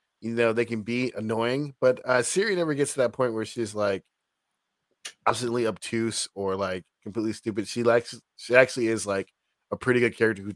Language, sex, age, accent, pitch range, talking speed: English, male, 20-39, American, 105-135 Hz, 195 wpm